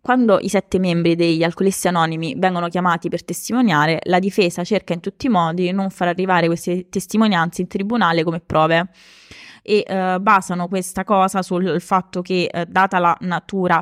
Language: Italian